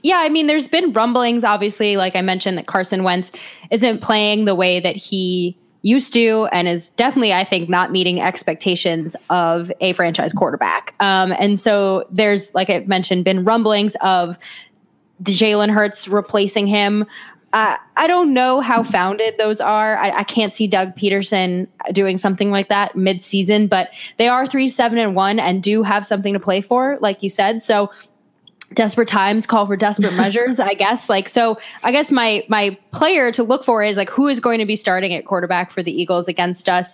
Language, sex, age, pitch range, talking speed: English, female, 10-29, 185-220 Hz, 185 wpm